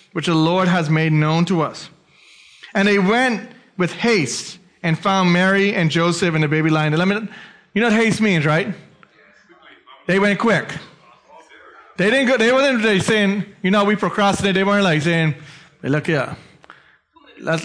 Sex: male